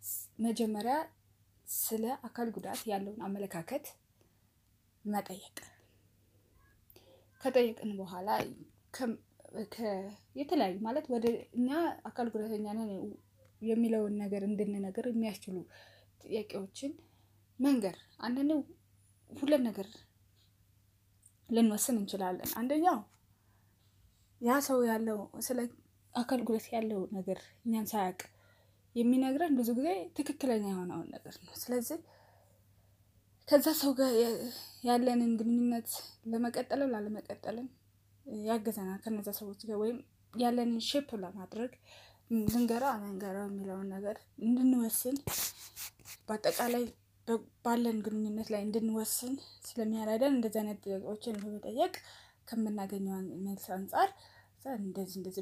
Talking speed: 30 wpm